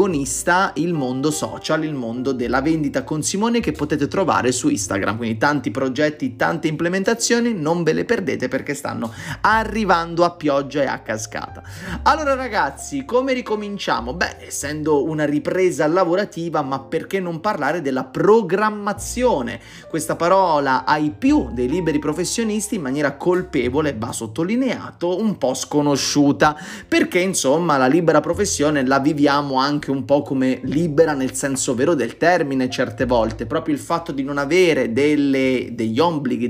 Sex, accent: male, native